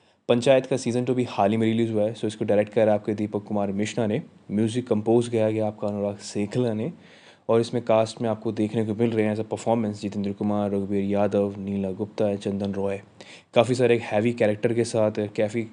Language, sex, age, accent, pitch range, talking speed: Hindi, male, 20-39, native, 105-125 Hz, 220 wpm